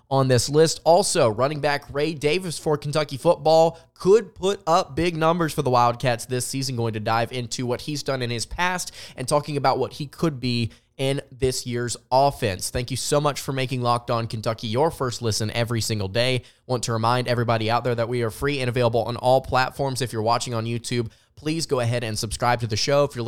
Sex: male